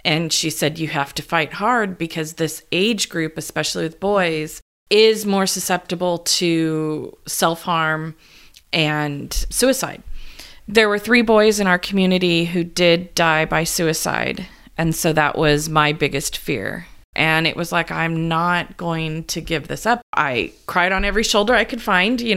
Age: 30-49